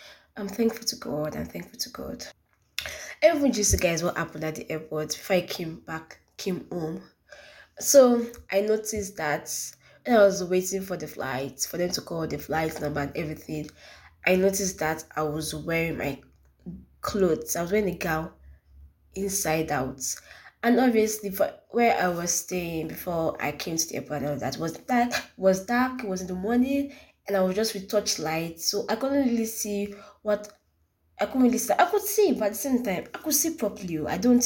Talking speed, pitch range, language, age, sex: 195 wpm, 155-220 Hz, English, 20-39, female